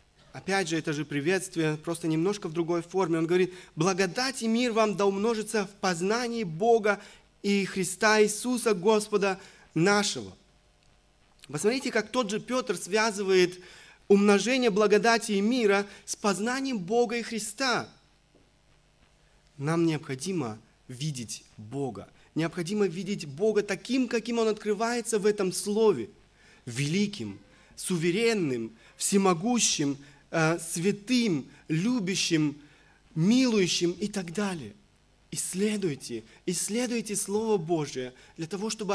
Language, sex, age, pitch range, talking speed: Russian, male, 30-49, 165-215 Hz, 110 wpm